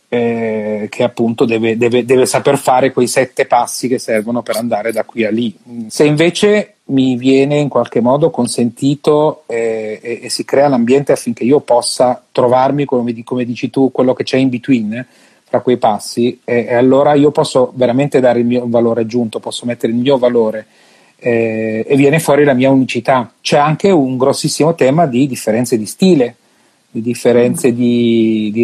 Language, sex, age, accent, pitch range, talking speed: Italian, male, 40-59, native, 120-145 Hz, 180 wpm